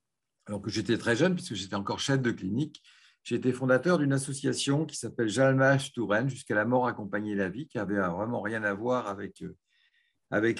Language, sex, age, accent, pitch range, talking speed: French, male, 50-69, French, 100-130 Hz, 195 wpm